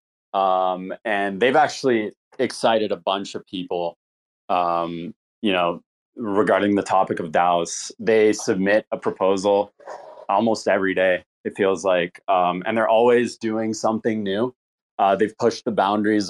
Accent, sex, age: American, male, 20-39